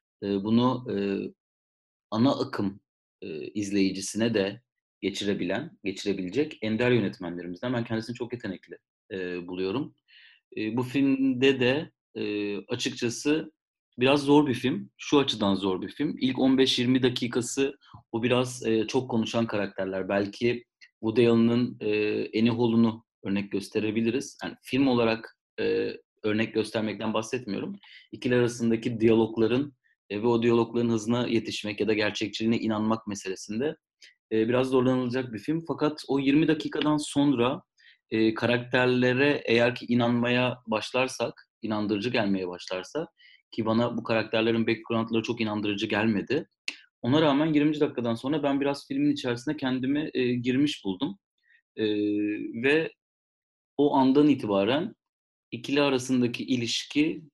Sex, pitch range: male, 105-130 Hz